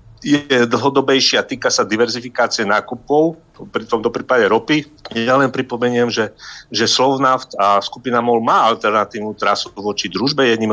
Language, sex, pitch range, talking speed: Slovak, male, 105-135 Hz, 145 wpm